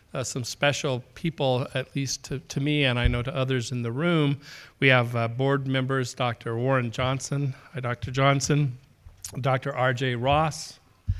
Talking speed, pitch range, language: 160 wpm, 120-140 Hz, English